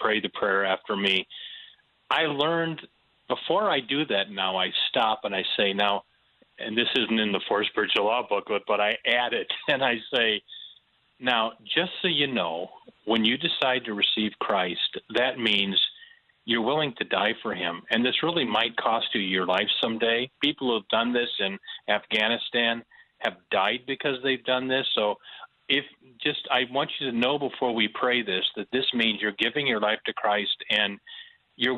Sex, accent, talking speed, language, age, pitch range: male, American, 185 wpm, English, 40-59, 110-160 Hz